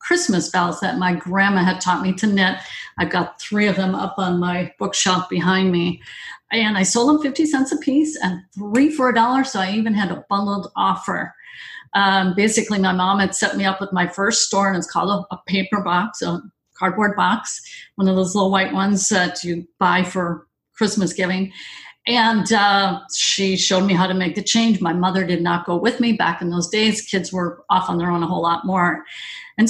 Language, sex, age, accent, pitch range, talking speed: English, female, 50-69, American, 180-215 Hz, 215 wpm